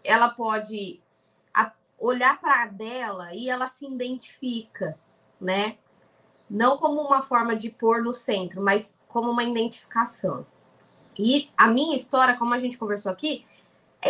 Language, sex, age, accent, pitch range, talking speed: Portuguese, female, 20-39, Brazilian, 210-280 Hz, 140 wpm